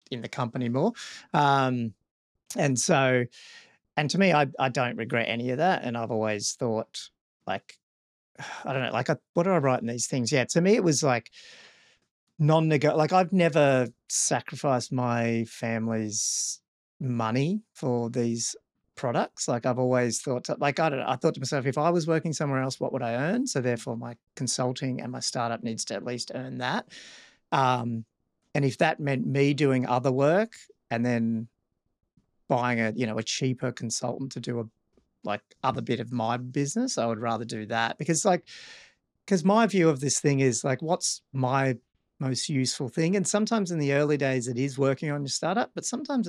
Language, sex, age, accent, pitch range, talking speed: English, male, 40-59, Australian, 120-160 Hz, 190 wpm